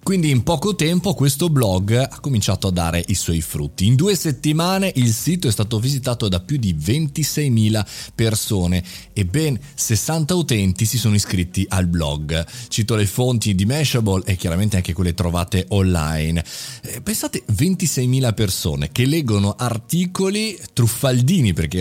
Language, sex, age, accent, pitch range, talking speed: Italian, male, 30-49, native, 95-145 Hz, 150 wpm